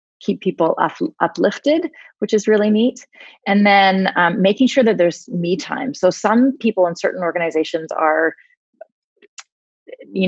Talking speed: 145 wpm